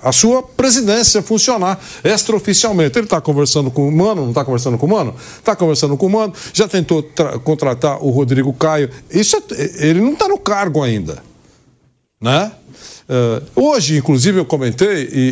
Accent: Brazilian